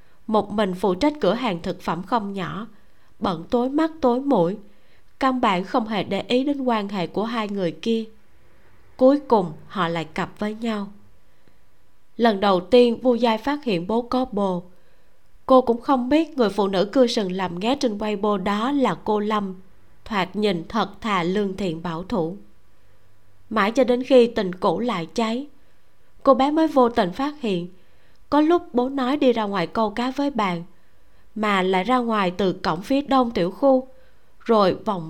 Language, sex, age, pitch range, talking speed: Vietnamese, female, 20-39, 190-245 Hz, 185 wpm